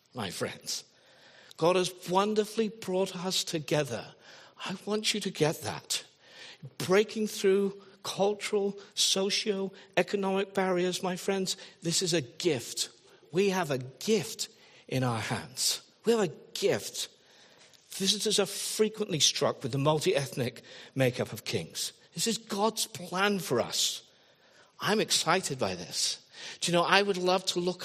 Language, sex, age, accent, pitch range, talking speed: English, male, 50-69, British, 175-215 Hz, 140 wpm